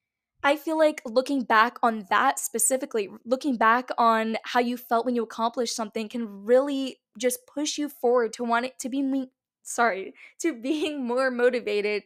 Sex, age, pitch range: female, 10-29, 230-275 Hz